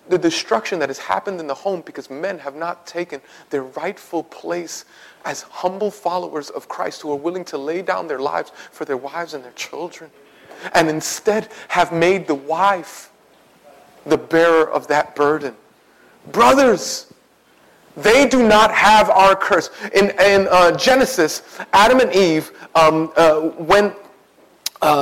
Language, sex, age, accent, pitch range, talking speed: English, male, 40-59, American, 150-195 Hz, 155 wpm